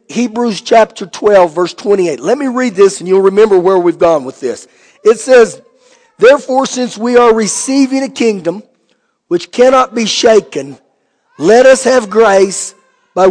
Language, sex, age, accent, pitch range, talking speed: English, male, 50-69, American, 180-235 Hz, 160 wpm